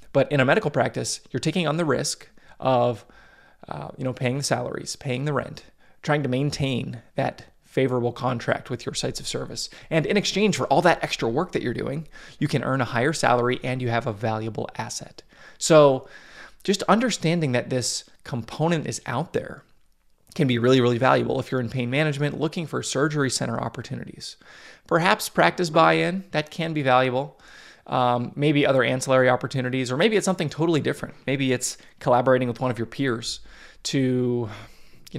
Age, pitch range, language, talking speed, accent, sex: 20-39, 120-145 Hz, English, 180 wpm, American, male